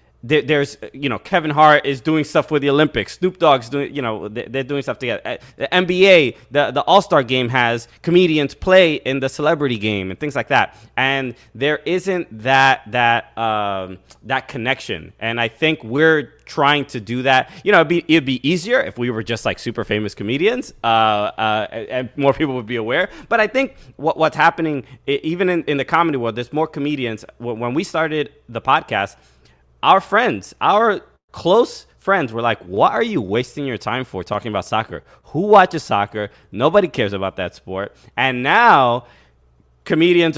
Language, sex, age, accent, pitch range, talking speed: English, male, 20-39, American, 120-180 Hz, 185 wpm